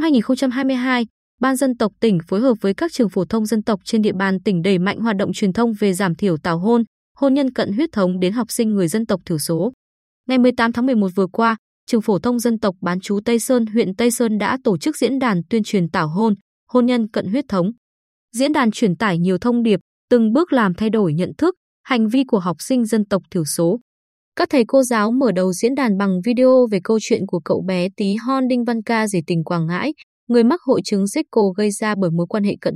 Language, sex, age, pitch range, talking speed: Vietnamese, female, 20-39, 190-250 Hz, 245 wpm